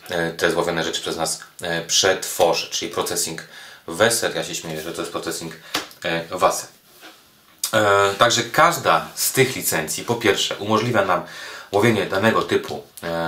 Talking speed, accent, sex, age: 145 wpm, native, male, 30-49